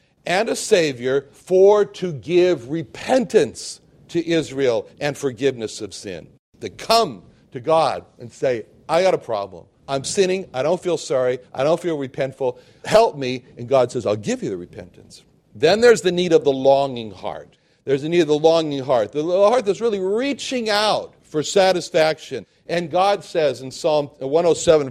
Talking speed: 175 wpm